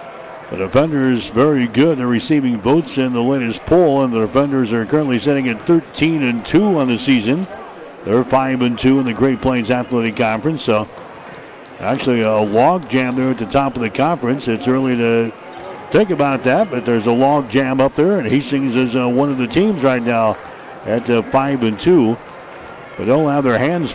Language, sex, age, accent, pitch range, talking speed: English, male, 60-79, American, 125-150 Hz, 195 wpm